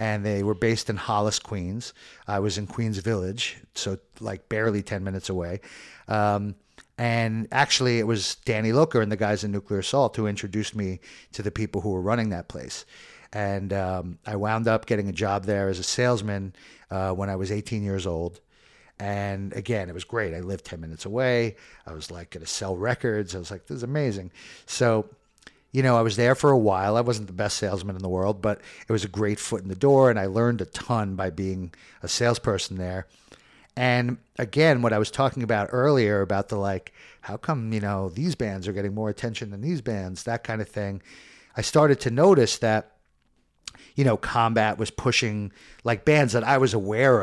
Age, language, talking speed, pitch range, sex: 50-69, English, 210 wpm, 95-115 Hz, male